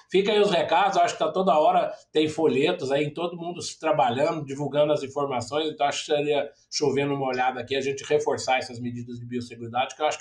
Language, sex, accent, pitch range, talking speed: Portuguese, male, Brazilian, 140-200 Hz, 215 wpm